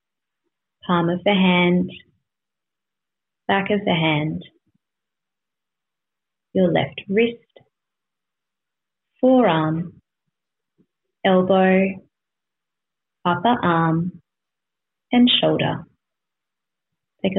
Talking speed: 60 wpm